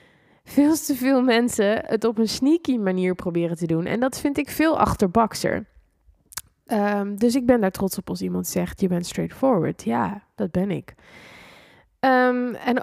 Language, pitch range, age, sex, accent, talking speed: Dutch, 185-235 Hz, 20-39, female, Dutch, 165 wpm